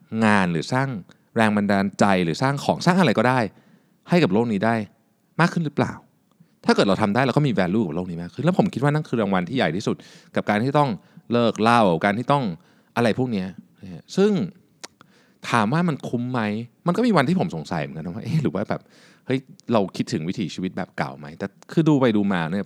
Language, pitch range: Thai, 110-175 Hz